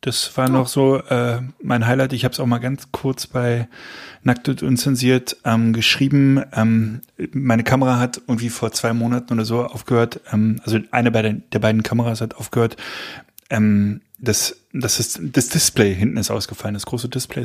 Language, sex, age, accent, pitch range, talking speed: German, male, 30-49, German, 110-135 Hz, 170 wpm